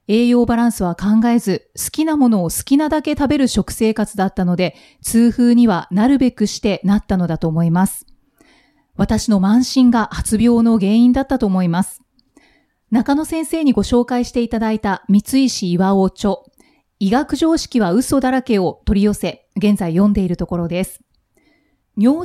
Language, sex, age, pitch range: Japanese, female, 30-49, 200-260 Hz